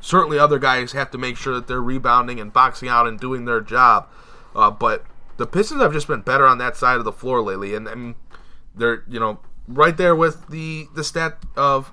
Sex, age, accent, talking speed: male, 20-39, American, 220 wpm